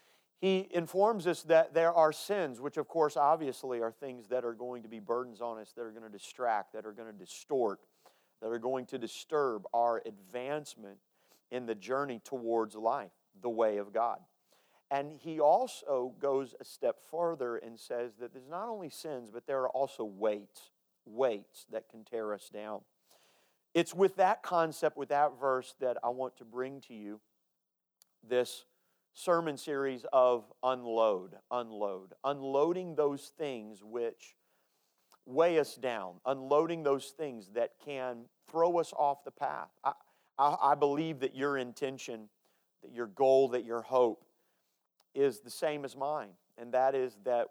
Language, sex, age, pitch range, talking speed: English, male, 40-59, 115-145 Hz, 165 wpm